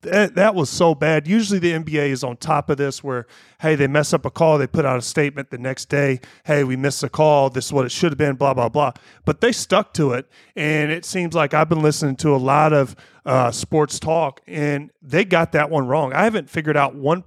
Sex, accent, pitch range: male, American, 130-155 Hz